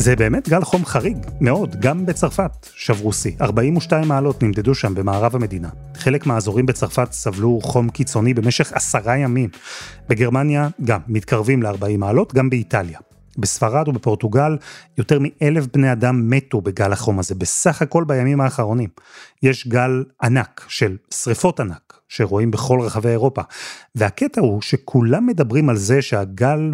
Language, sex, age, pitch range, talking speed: Hebrew, male, 30-49, 115-150 Hz, 140 wpm